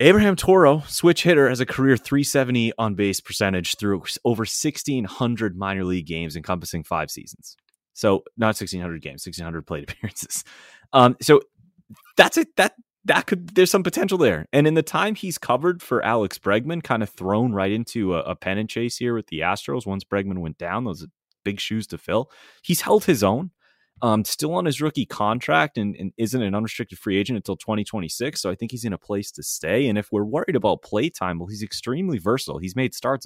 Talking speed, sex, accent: 200 wpm, male, American